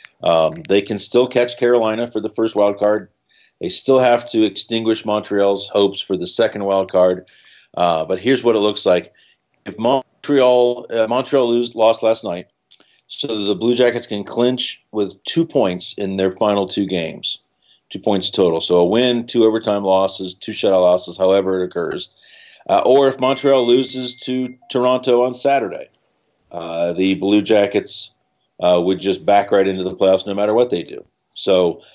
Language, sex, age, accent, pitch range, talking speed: English, male, 40-59, American, 95-120 Hz, 175 wpm